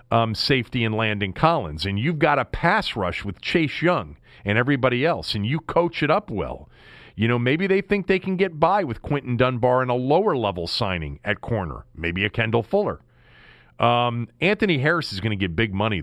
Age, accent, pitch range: 40-59, American, 110-165 Hz